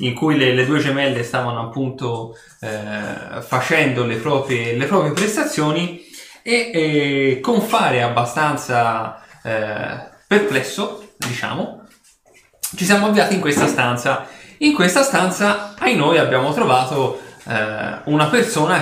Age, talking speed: 20-39, 125 wpm